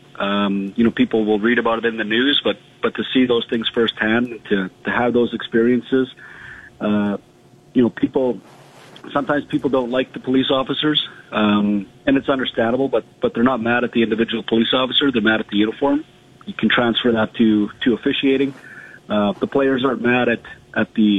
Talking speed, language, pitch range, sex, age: 195 wpm, English, 110-130 Hz, male, 40-59